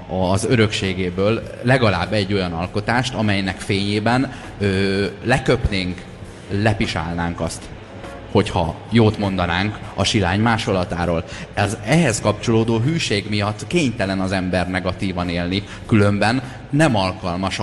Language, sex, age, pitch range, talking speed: Hungarian, male, 30-49, 95-110 Hz, 100 wpm